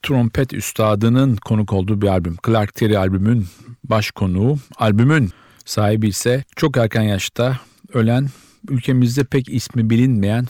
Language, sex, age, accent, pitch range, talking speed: Turkish, male, 50-69, native, 105-125 Hz, 120 wpm